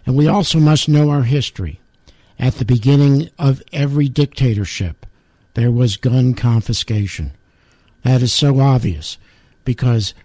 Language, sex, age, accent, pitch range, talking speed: English, male, 60-79, American, 110-140 Hz, 130 wpm